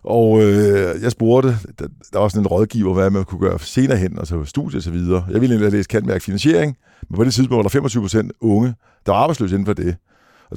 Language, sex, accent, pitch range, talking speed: Danish, male, native, 100-125 Hz, 245 wpm